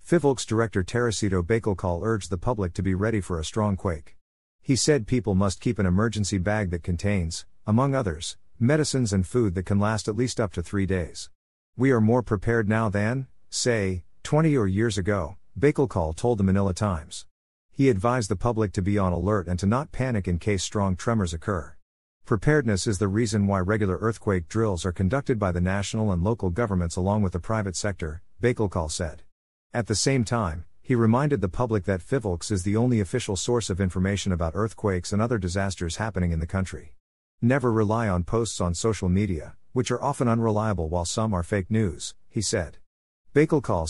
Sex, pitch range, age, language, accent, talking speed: male, 90-115 Hz, 50-69, English, American, 190 wpm